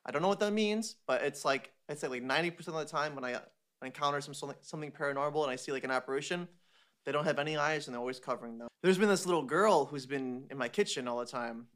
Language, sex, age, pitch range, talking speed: English, male, 20-39, 135-185 Hz, 255 wpm